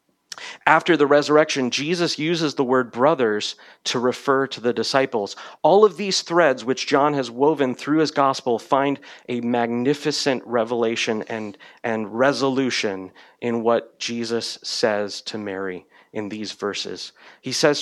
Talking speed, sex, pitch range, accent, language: 140 wpm, male, 110-140 Hz, American, English